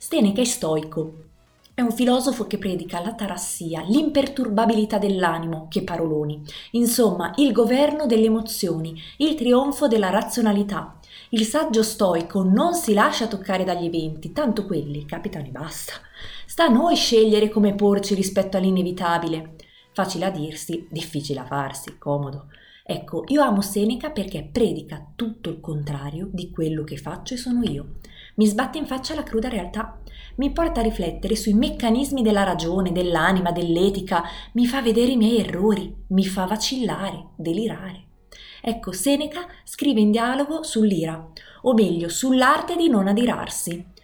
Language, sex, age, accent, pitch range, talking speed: Italian, female, 30-49, native, 170-235 Hz, 145 wpm